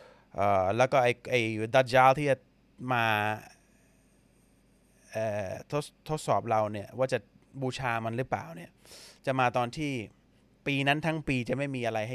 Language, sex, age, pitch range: Thai, male, 30-49, 80-130 Hz